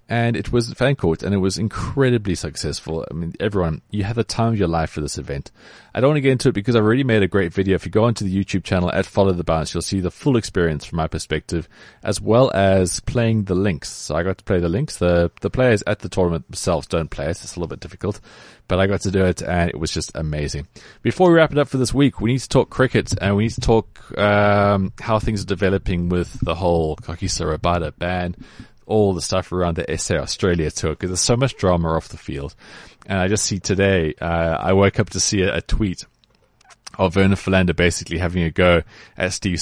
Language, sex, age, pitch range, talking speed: English, male, 30-49, 85-110 Hz, 245 wpm